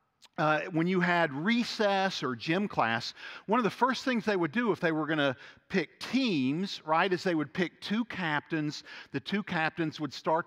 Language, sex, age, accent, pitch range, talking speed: English, male, 50-69, American, 145-200 Hz, 200 wpm